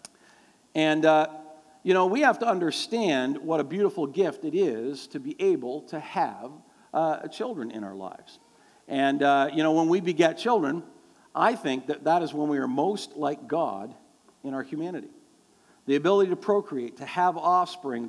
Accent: American